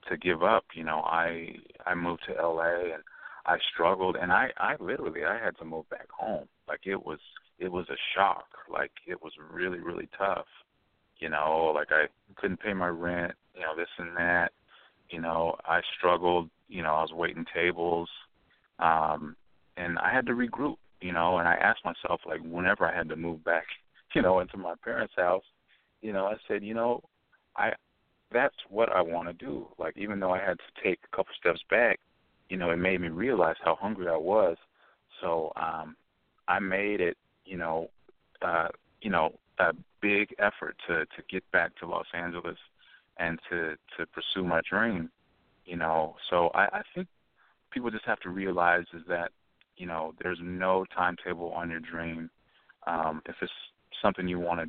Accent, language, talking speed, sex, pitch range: American, English, 190 wpm, male, 80-90 Hz